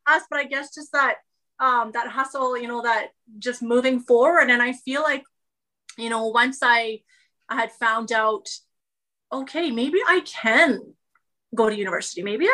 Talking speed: 165 wpm